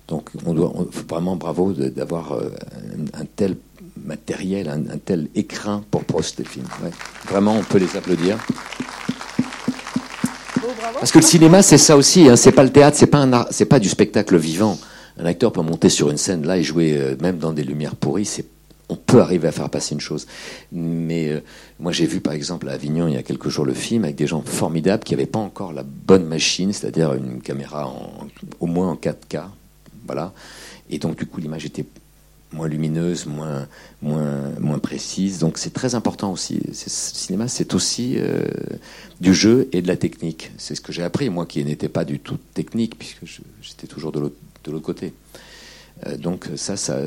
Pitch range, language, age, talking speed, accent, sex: 75-105 Hz, French, 60-79, 210 wpm, French, male